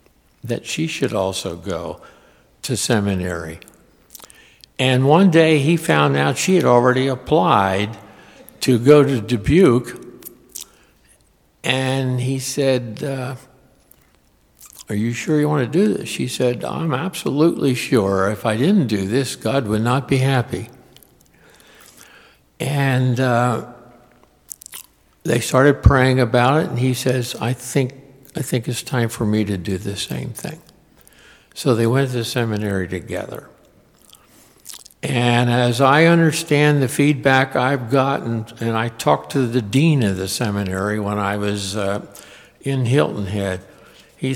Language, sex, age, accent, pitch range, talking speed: English, male, 60-79, American, 100-130 Hz, 140 wpm